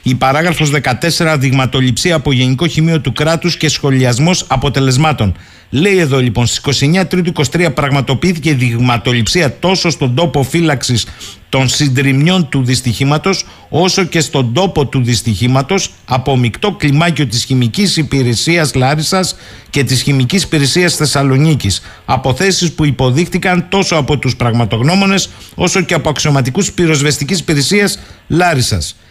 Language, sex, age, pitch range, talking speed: Greek, male, 50-69, 130-180 Hz, 125 wpm